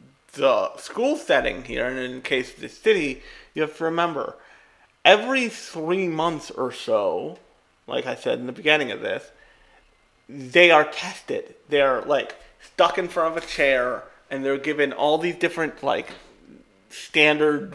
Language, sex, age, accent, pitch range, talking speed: English, male, 30-49, American, 135-175 Hz, 155 wpm